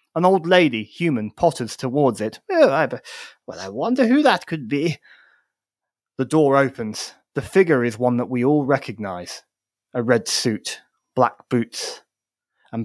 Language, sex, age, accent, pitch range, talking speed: English, male, 30-49, British, 130-215 Hz, 145 wpm